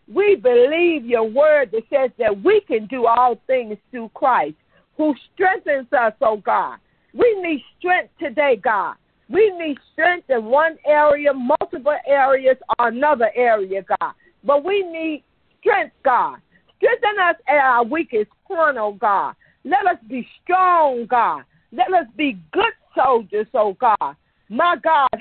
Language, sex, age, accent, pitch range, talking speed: English, female, 50-69, American, 240-330 Hz, 150 wpm